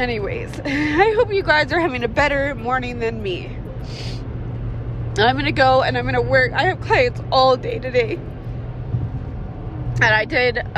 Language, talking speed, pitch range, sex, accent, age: English, 165 wpm, 115-130 Hz, female, American, 20-39